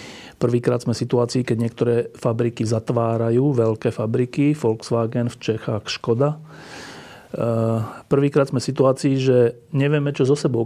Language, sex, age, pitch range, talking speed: Slovak, male, 40-59, 115-140 Hz, 130 wpm